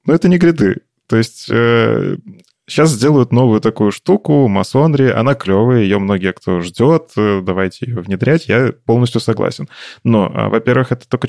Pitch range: 105-120 Hz